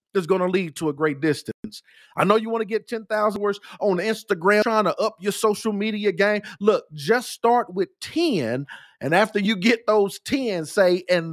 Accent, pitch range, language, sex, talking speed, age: American, 185-230 Hz, English, male, 200 wpm, 50-69